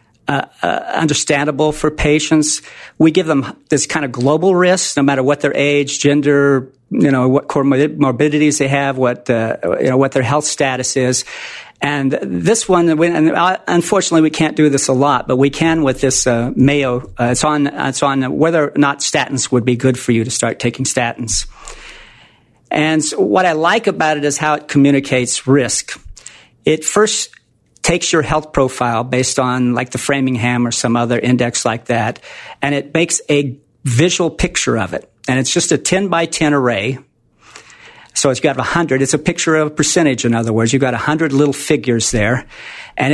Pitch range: 125-155 Hz